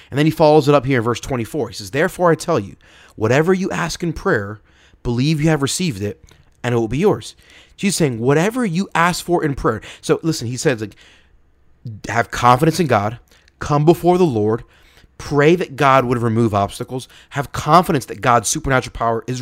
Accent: American